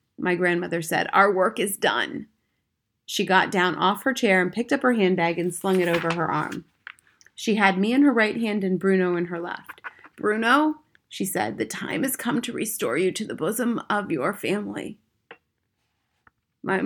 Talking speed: 190 wpm